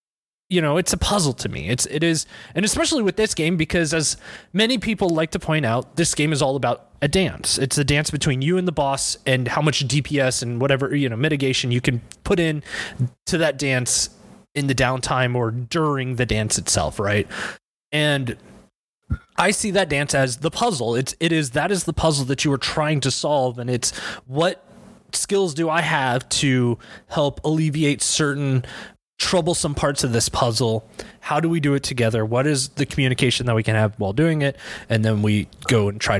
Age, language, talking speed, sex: 20-39, English, 210 wpm, male